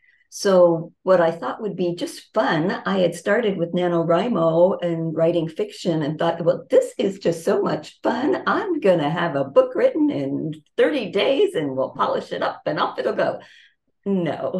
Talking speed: 185 wpm